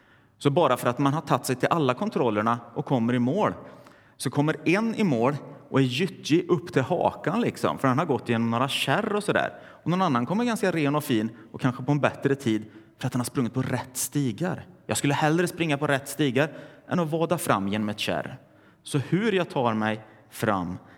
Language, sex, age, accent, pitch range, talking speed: Swedish, male, 30-49, native, 110-145 Hz, 225 wpm